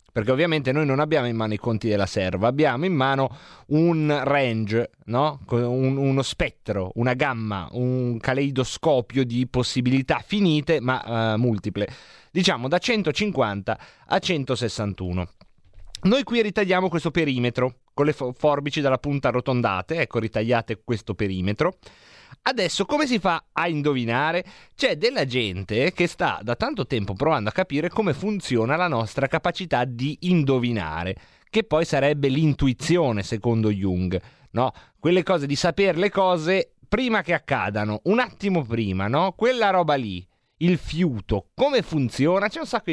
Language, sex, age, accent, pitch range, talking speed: Italian, male, 30-49, native, 115-180 Hz, 145 wpm